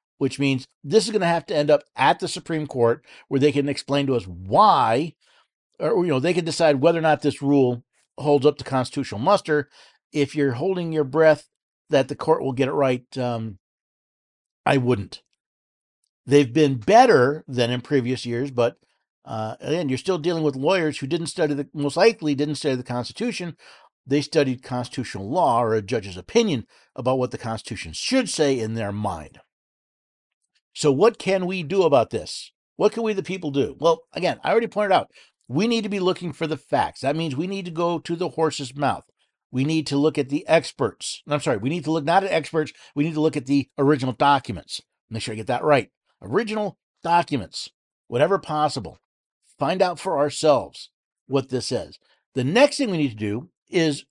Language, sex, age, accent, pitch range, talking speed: English, male, 50-69, American, 130-170 Hz, 200 wpm